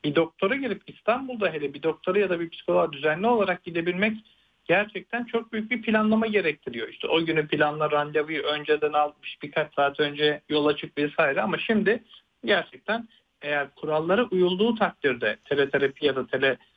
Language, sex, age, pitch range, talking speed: Turkish, male, 50-69, 150-205 Hz, 160 wpm